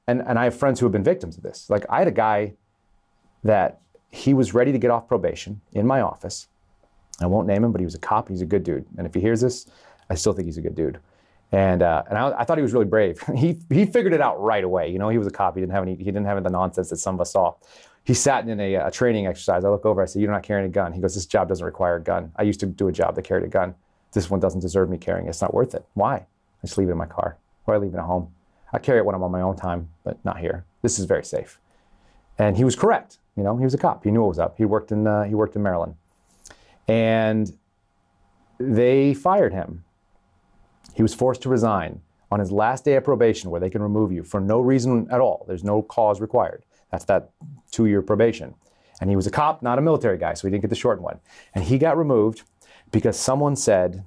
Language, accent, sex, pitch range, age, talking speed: English, American, male, 95-115 Hz, 30-49, 270 wpm